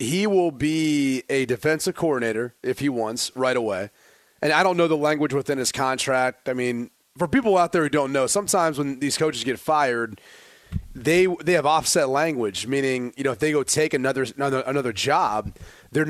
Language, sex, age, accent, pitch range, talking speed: English, male, 30-49, American, 130-160 Hz, 195 wpm